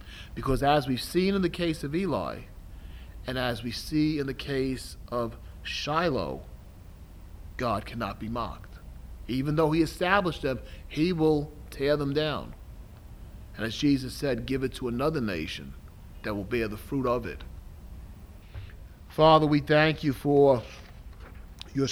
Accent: American